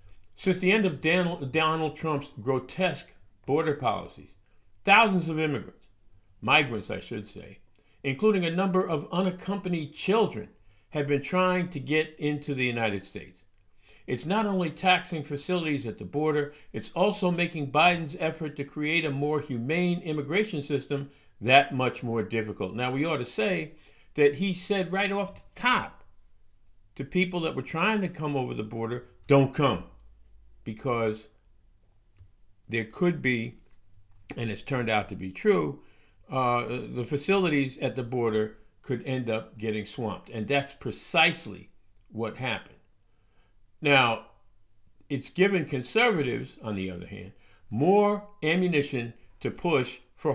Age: 50-69